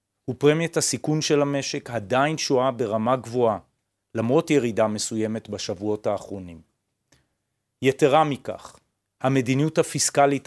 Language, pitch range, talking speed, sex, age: Hebrew, 105-135 Hz, 95 wpm, male, 40-59